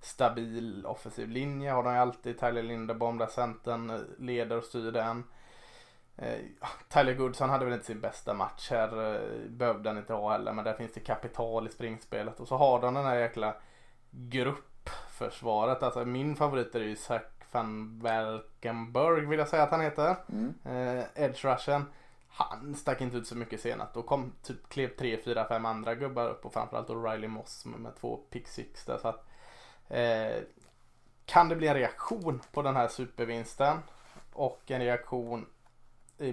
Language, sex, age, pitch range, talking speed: Swedish, male, 20-39, 115-130 Hz, 165 wpm